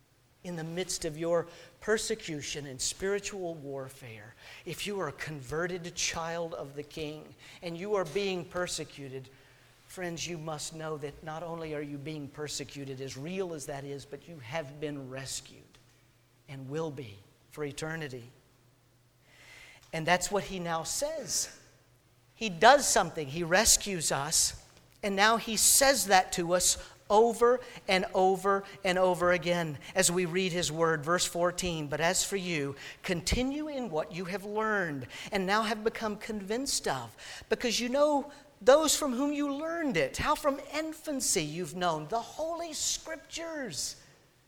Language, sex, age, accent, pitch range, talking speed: English, male, 50-69, American, 150-235 Hz, 155 wpm